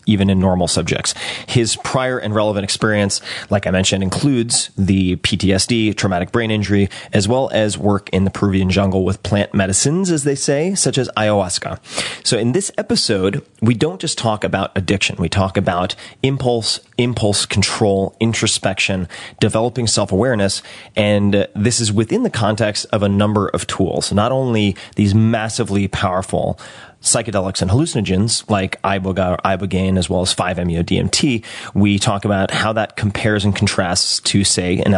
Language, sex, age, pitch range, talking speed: English, male, 30-49, 95-115 Hz, 160 wpm